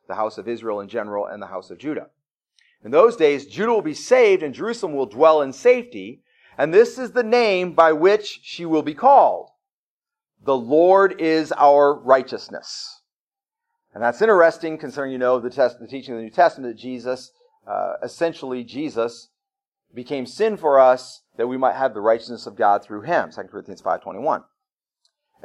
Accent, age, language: American, 40-59, English